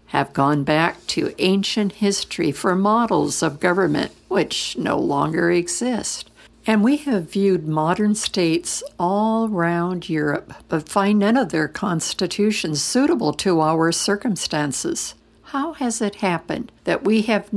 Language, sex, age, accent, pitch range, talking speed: English, female, 60-79, American, 160-220 Hz, 135 wpm